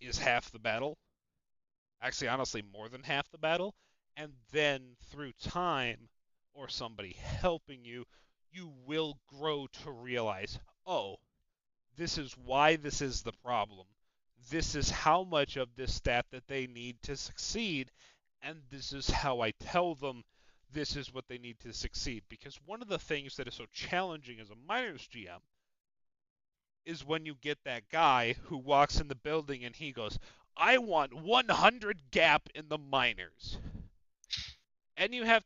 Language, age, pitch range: English, 30-49, 115-155 Hz